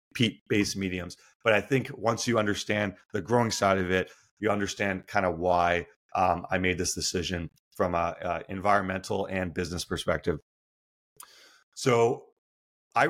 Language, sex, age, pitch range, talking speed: English, male, 30-49, 95-115 Hz, 140 wpm